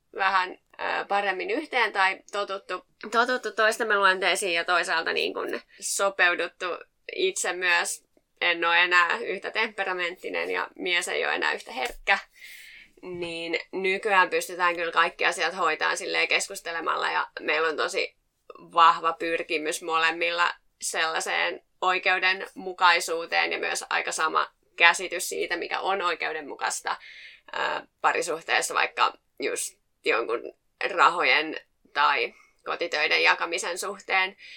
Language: Finnish